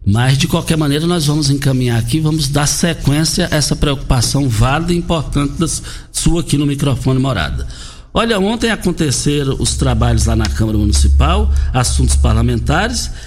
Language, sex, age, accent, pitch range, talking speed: Portuguese, male, 60-79, Brazilian, 120-155 Hz, 155 wpm